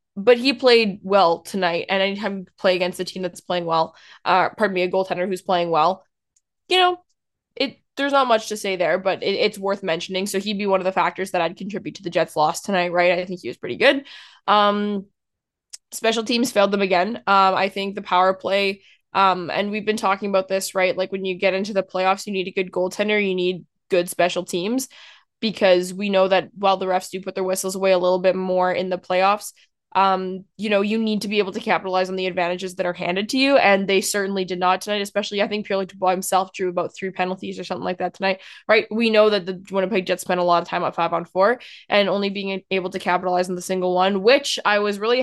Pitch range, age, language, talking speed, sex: 185-200 Hz, 20-39, English, 245 wpm, female